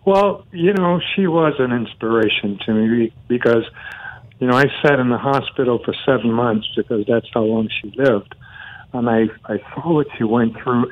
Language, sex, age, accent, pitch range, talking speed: English, male, 60-79, American, 110-130 Hz, 185 wpm